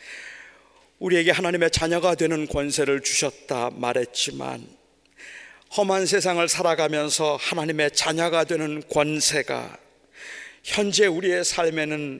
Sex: male